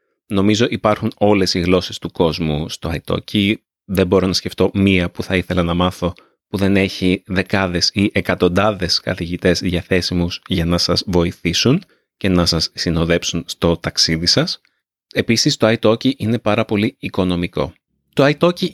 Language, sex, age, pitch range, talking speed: Greek, male, 30-49, 90-120 Hz, 150 wpm